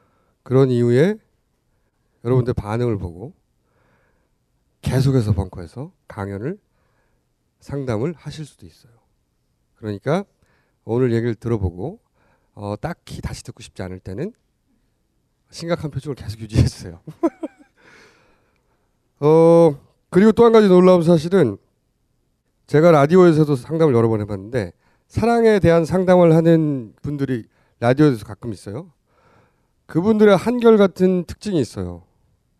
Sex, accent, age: male, native, 40-59